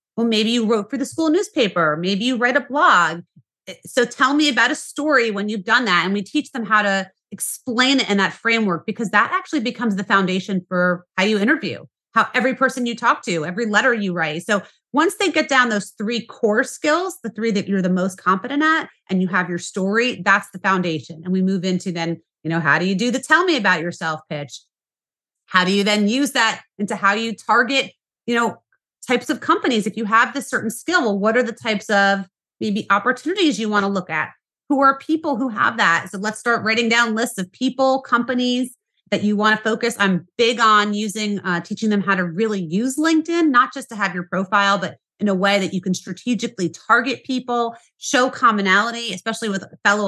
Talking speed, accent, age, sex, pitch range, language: 220 wpm, American, 30-49, female, 190-245 Hz, English